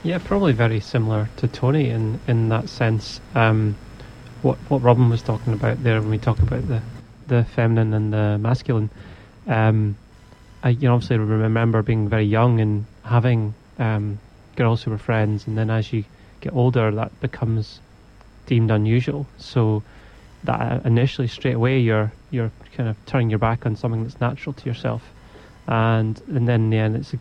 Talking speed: 180 wpm